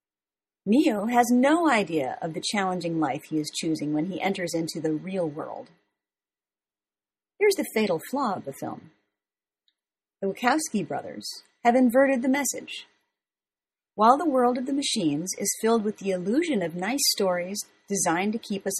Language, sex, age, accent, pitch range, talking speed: English, female, 40-59, American, 155-235 Hz, 160 wpm